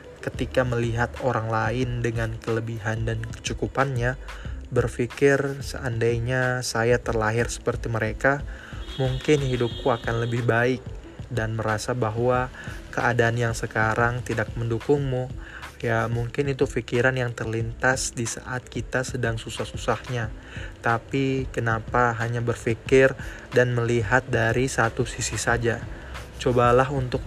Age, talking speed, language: 20-39, 110 wpm, Indonesian